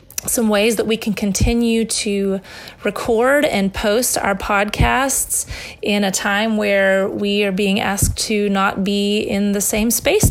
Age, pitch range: 30-49, 190-215 Hz